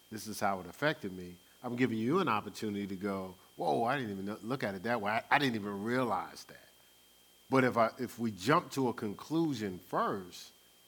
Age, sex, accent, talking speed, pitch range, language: 40-59, male, American, 210 wpm, 100-130 Hz, English